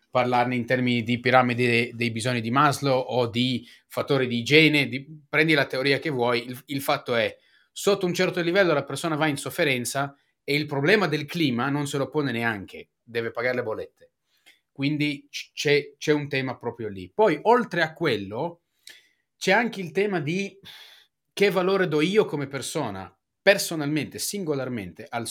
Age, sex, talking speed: 30-49, male, 175 wpm